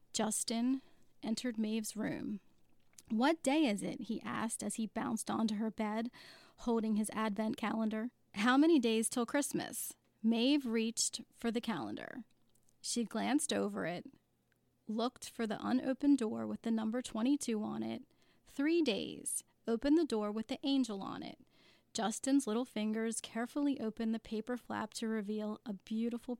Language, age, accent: English, 30-49, American